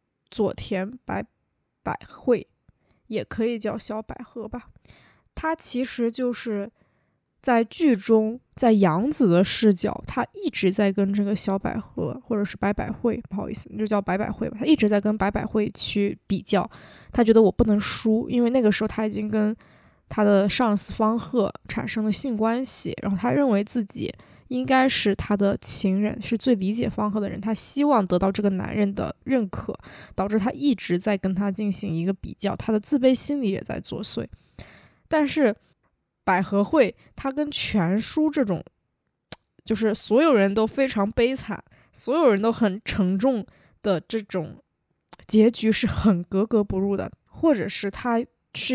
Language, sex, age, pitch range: Chinese, female, 20-39, 200-245 Hz